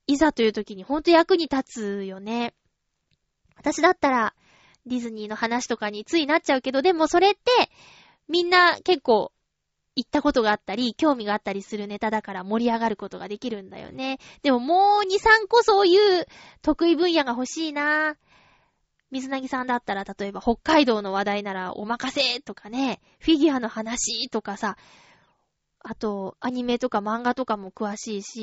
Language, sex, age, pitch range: Japanese, female, 20-39, 220-330 Hz